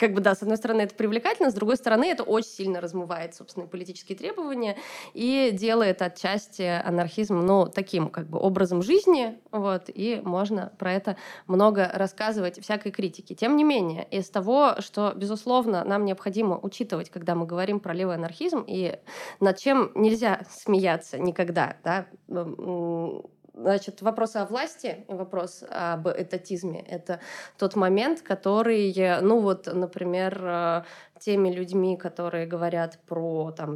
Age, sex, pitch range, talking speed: 20-39, female, 175-220 Hz, 145 wpm